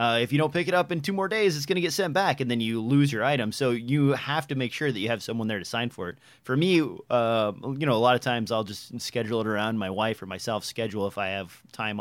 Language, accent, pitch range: English, American, 110-140 Hz